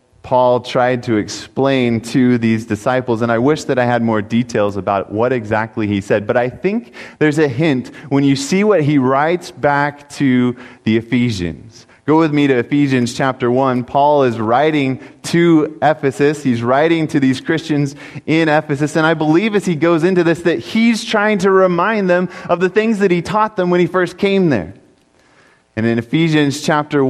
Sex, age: male, 30-49